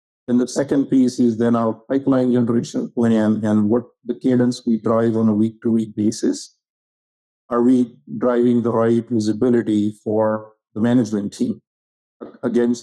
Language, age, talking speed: English, 50-69, 140 wpm